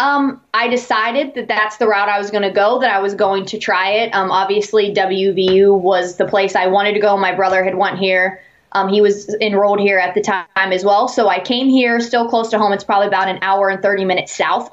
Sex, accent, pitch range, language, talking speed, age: female, American, 190-225 Hz, English, 250 wpm, 20-39